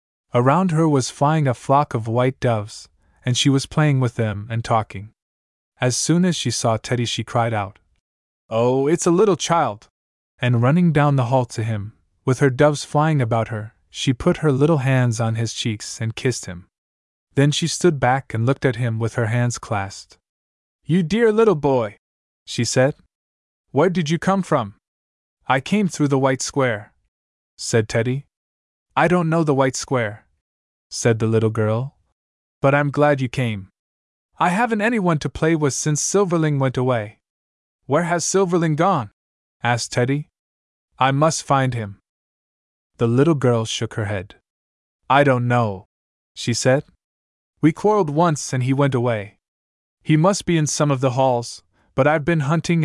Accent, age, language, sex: American, 20-39, English, male